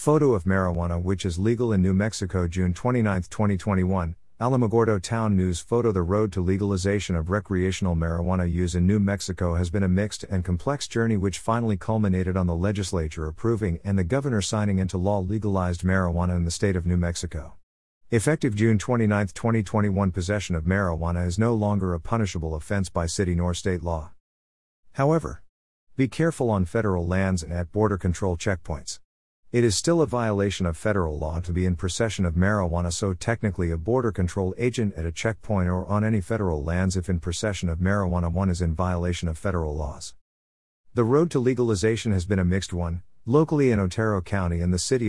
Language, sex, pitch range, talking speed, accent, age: English, male, 85-110 Hz, 185 wpm, American, 50-69